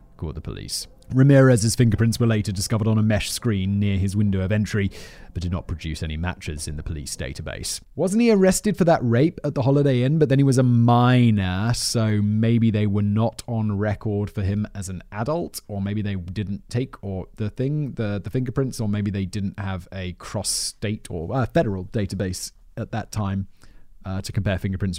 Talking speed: 205 wpm